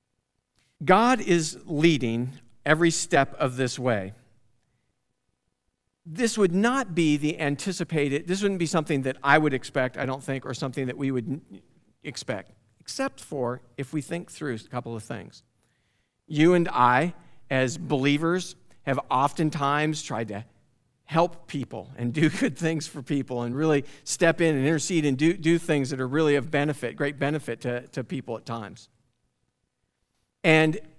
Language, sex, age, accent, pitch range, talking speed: English, male, 50-69, American, 125-175 Hz, 155 wpm